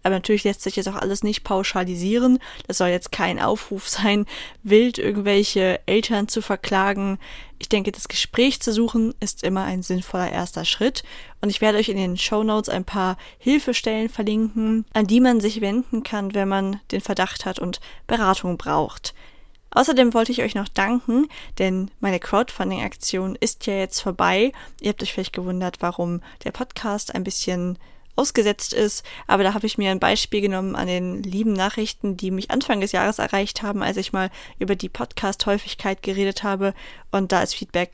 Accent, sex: German, female